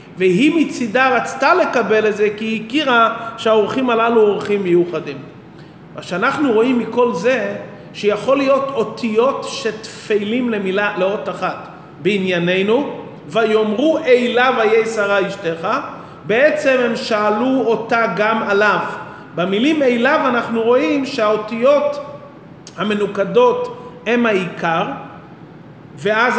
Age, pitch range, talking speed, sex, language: 40-59, 195-245 Hz, 100 wpm, male, English